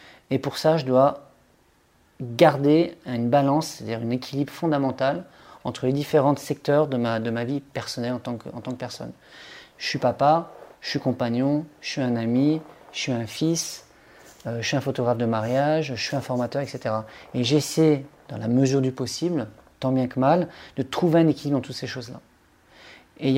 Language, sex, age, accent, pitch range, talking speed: French, male, 30-49, French, 120-155 Hz, 195 wpm